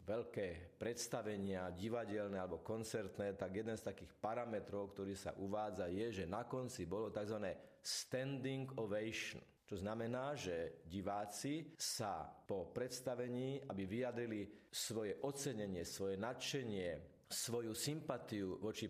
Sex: male